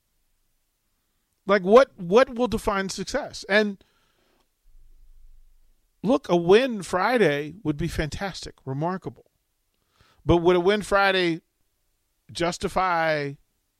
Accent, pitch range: American, 110-175 Hz